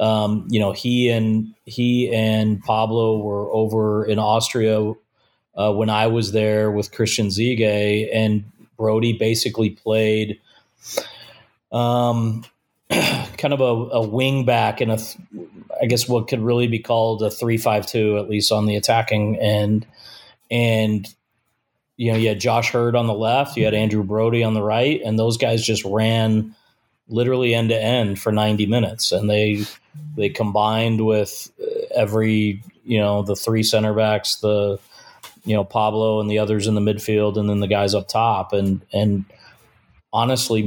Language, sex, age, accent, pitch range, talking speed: English, male, 30-49, American, 105-115 Hz, 165 wpm